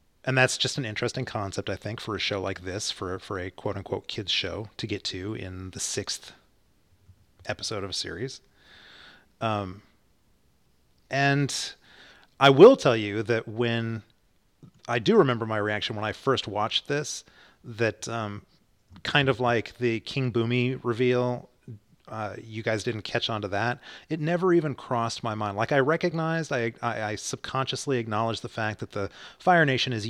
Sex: male